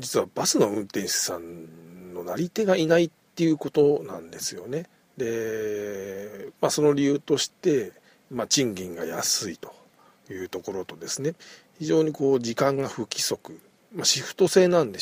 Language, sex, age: Japanese, male, 50-69